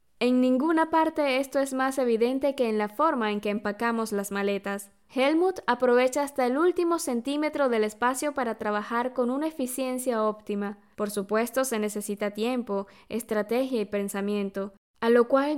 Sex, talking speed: female, 160 wpm